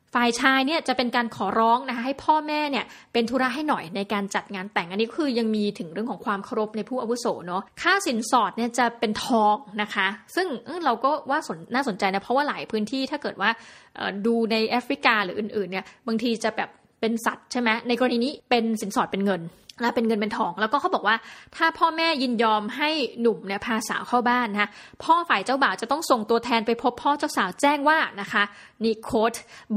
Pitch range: 210-255 Hz